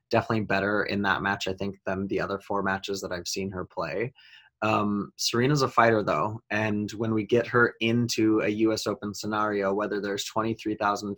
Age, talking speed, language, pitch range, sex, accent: 20-39, 190 wpm, English, 100-115 Hz, male, American